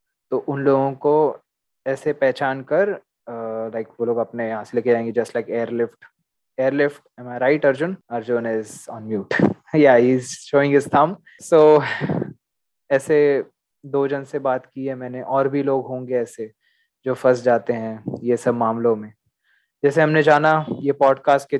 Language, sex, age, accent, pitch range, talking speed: Hindi, male, 20-39, native, 120-140 Hz, 155 wpm